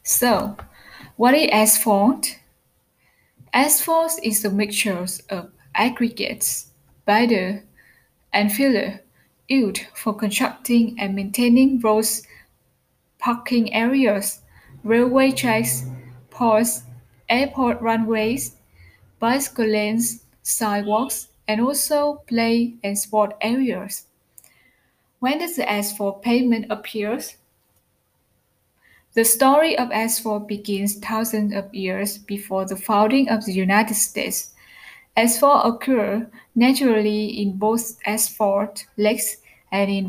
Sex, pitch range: female, 205-240 Hz